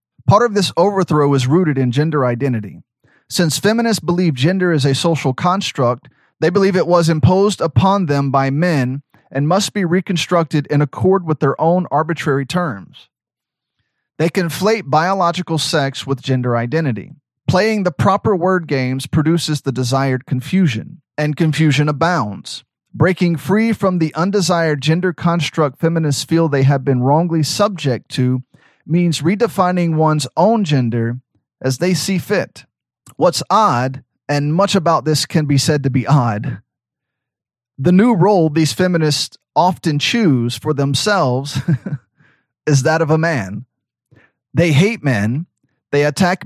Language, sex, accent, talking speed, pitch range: English, male, American, 145 wpm, 135-180 Hz